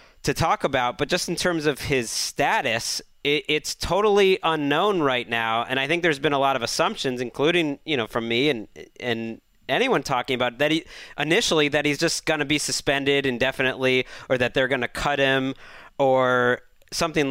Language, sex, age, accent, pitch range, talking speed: English, male, 30-49, American, 120-155 Hz, 185 wpm